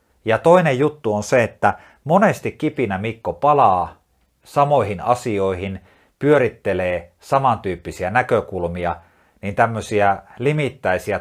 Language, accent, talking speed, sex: Finnish, native, 95 wpm, male